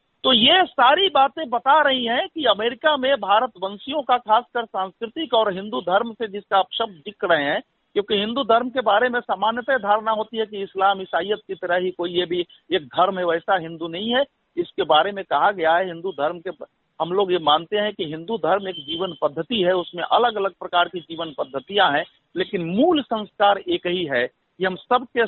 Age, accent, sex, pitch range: 50-69, native, male, 175-240 Hz